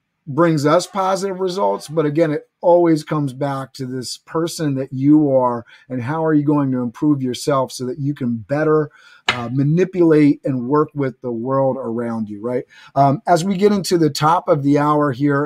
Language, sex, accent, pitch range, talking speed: English, male, American, 130-155 Hz, 195 wpm